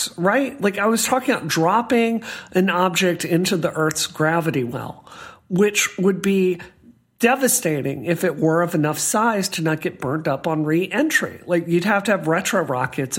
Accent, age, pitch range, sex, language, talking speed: American, 40-59, 160-250 Hz, male, English, 175 wpm